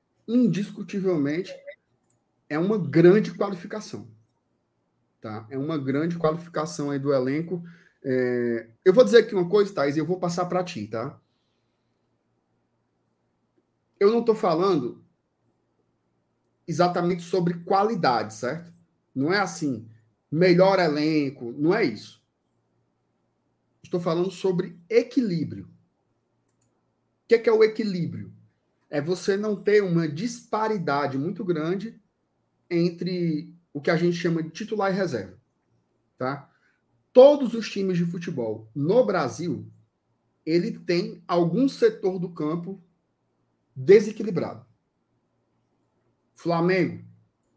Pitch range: 140-195 Hz